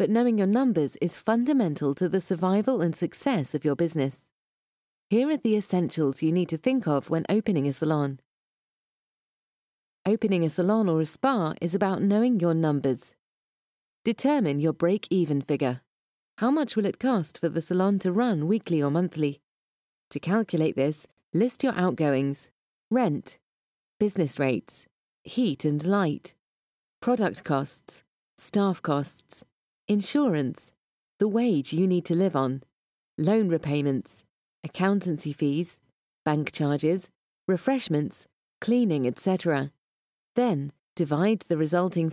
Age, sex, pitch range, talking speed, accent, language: 30-49, female, 150-210 Hz, 130 wpm, British, English